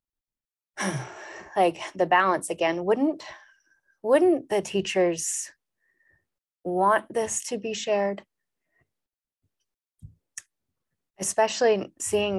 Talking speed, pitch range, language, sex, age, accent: 75 wpm, 170-190 Hz, English, female, 20-39, American